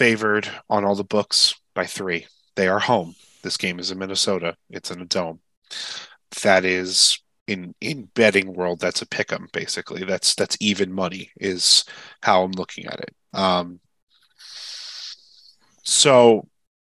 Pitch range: 95-125 Hz